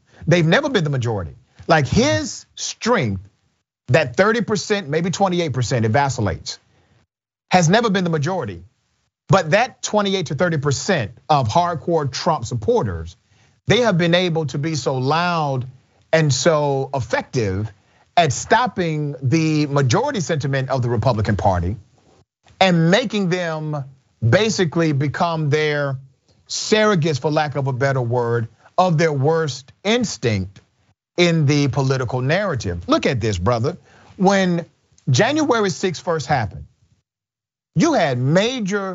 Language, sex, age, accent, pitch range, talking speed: English, male, 40-59, American, 125-180 Hz, 125 wpm